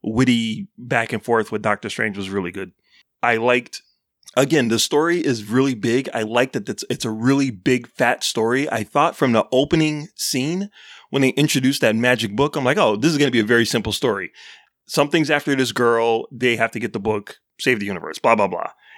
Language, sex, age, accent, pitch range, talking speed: English, male, 30-49, American, 115-150 Hz, 215 wpm